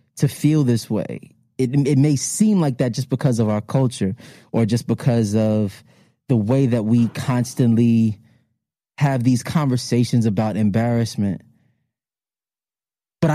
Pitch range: 115-140 Hz